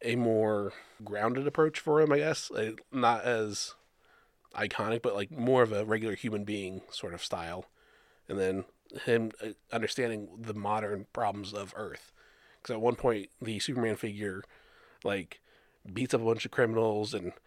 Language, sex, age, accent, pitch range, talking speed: English, male, 30-49, American, 110-150 Hz, 160 wpm